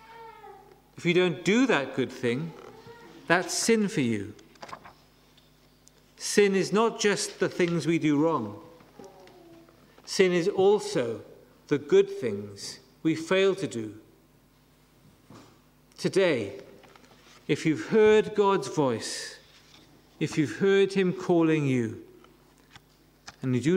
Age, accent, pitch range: 50-69, British, 130-195 Hz